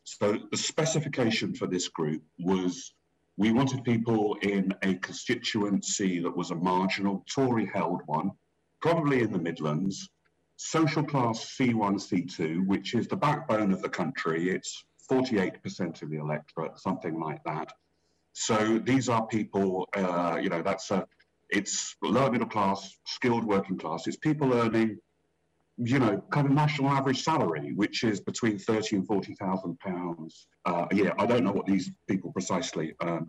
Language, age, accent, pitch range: English, 50-69, British, 90-125 Hz